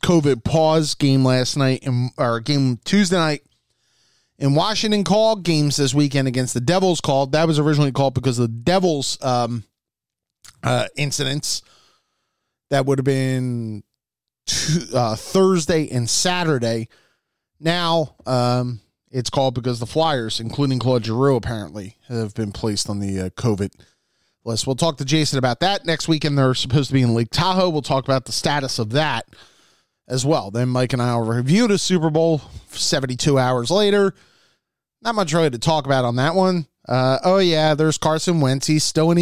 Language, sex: English, male